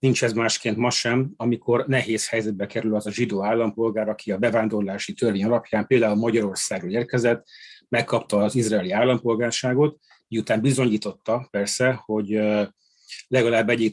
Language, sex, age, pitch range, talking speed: Hungarian, male, 30-49, 110-130 Hz, 135 wpm